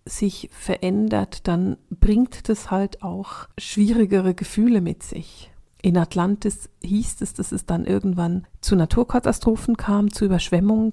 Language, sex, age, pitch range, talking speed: German, female, 40-59, 185-215 Hz, 130 wpm